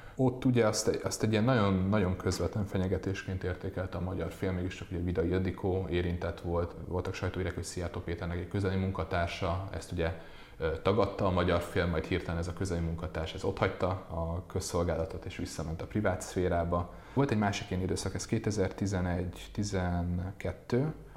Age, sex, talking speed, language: 30-49, male, 155 wpm, Hungarian